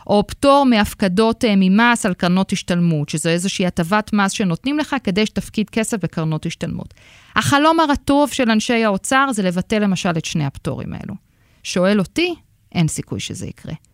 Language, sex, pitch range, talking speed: Hebrew, female, 175-220 Hz, 160 wpm